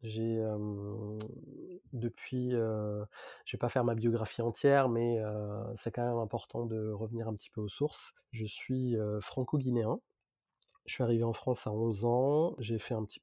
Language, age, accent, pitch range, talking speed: French, 30-49, French, 110-130 Hz, 185 wpm